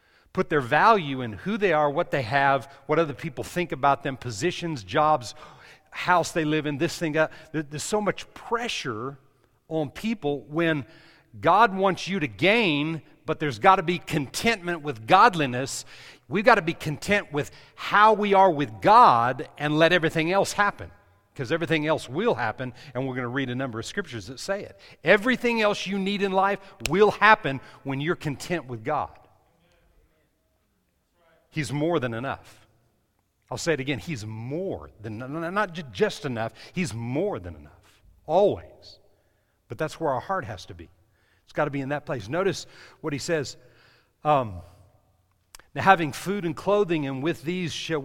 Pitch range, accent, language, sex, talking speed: 125-175 Hz, American, English, male, 175 wpm